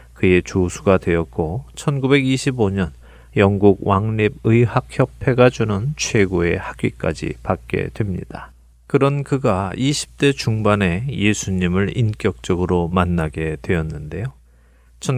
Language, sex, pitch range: Korean, male, 90-125 Hz